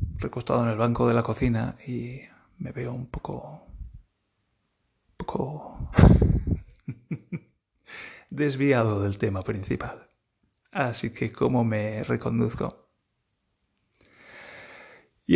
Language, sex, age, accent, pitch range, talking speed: Spanish, male, 30-49, Spanish, 110-130 Hz, 90 wpm